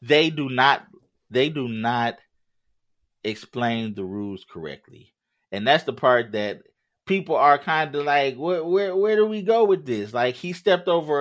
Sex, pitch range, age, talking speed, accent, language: male, 110-175 Hz, 30-49, 170 wpm, American, English